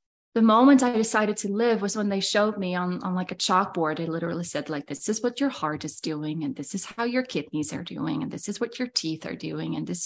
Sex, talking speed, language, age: female, 270 wpm, English, 20-39